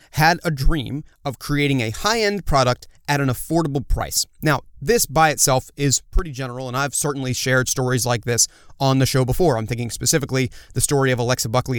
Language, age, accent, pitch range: English, 30-49, American, 125-155 Hz